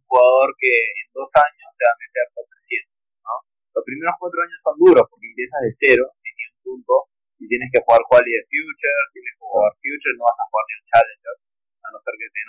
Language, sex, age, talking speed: Spanish, male, 20-39, 225 wpm